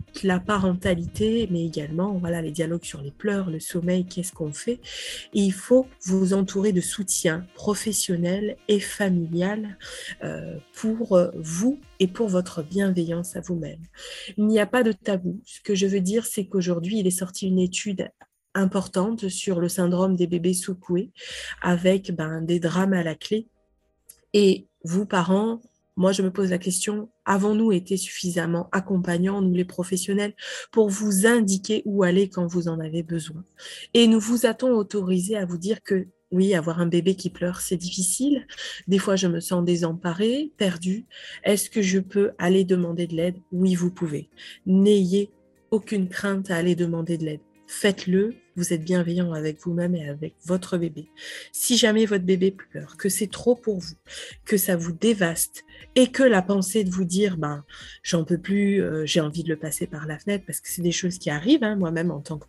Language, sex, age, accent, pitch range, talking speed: French, female, 20-39, French, 170-205 Hz, 185 wpm